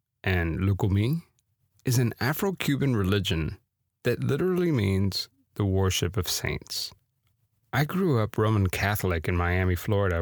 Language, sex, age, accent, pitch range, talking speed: English, male, 30-49, American, 95-125 Hz, 125 wpm